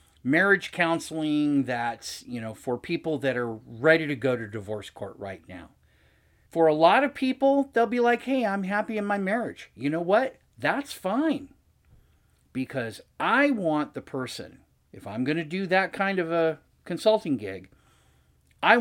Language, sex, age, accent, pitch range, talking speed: English, male, 40-59, American, 125-180 Hz, 170 wpm